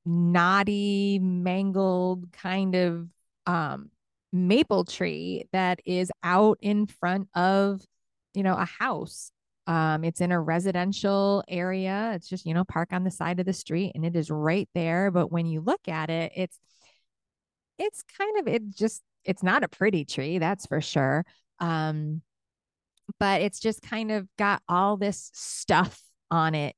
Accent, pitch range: American, 160-200 Hz